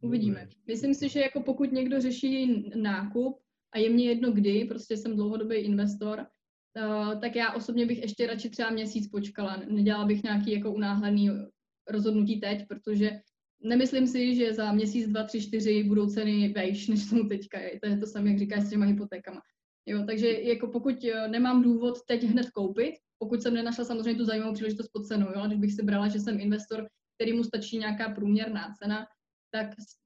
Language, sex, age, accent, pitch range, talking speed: Czech, female, 20-39, native, 205-225 Hz, 180 wpm